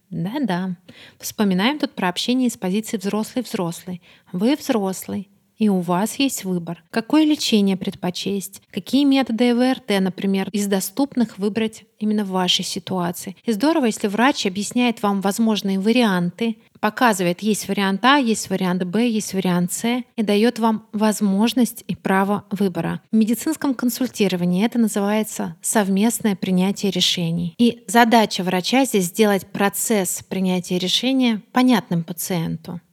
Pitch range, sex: 190-235 Hz, female